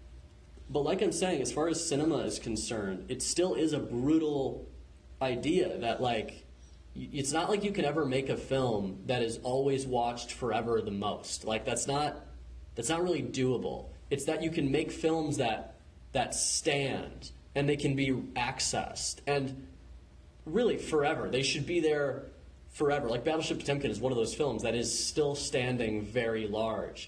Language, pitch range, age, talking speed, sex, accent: English, 100-140 Hz, 20-39, 170 wpm, male, American